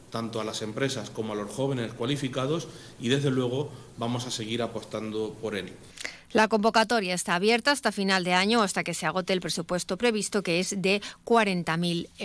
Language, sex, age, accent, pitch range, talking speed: Spanish, female, 40-59, Spanish, 165-205 Hz, 180 wpm